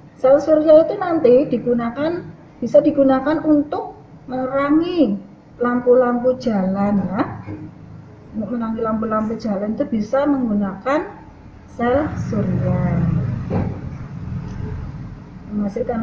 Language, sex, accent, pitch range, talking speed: Indonesian, female, native, 195-290 Hz, 80 wpm